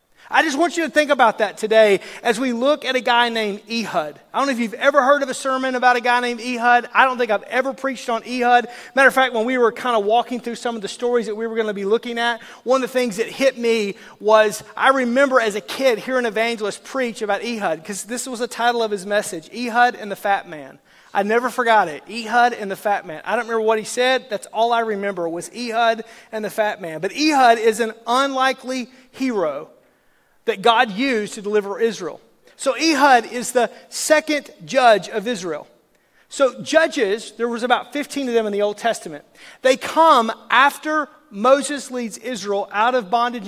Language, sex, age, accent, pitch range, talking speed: English, male, 30-49, American, 220-260 Hz, 220 wpm